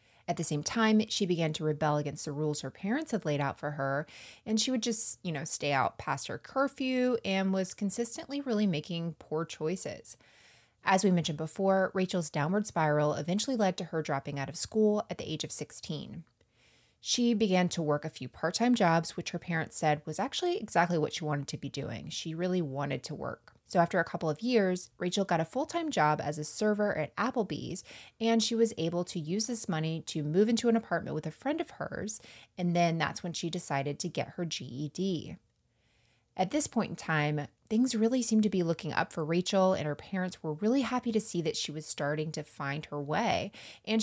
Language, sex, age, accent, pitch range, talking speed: English, female, 20-39, American, 155-210 Hz, 215 wpm